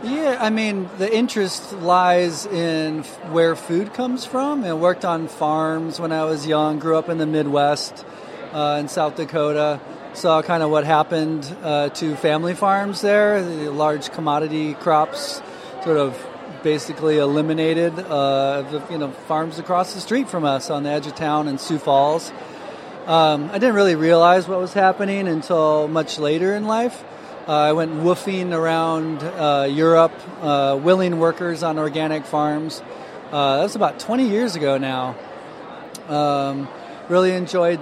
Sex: male